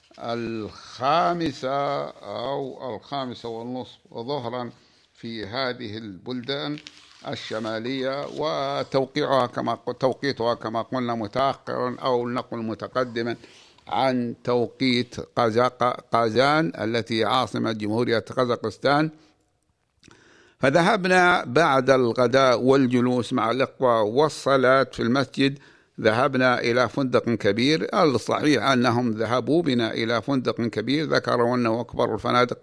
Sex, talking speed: male, 90 wpm